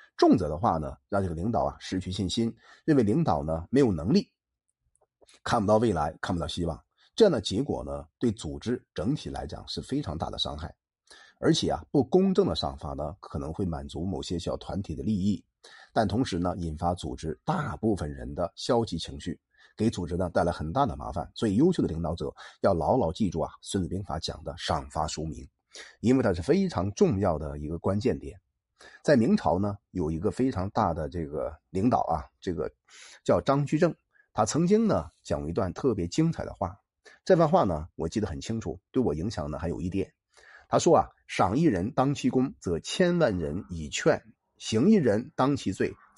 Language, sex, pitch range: Chinese, male, 80-120 Hz